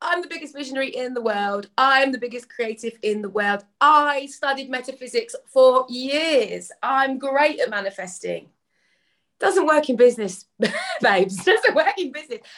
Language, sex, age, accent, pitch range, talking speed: English, female, 30-49, British, 215-280 Hz, 155 wpm